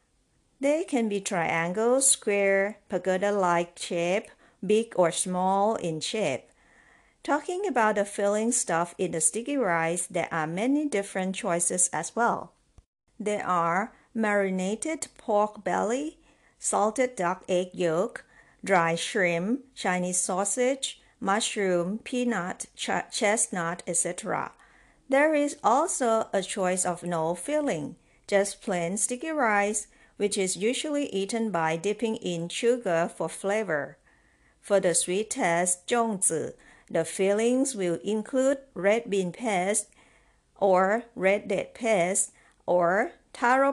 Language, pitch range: Chinese, 180-235 Hz